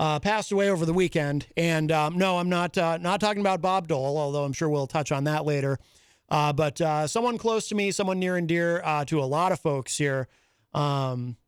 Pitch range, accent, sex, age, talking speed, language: 130-160 Hz, American, male, 30-49, 230 wpm, English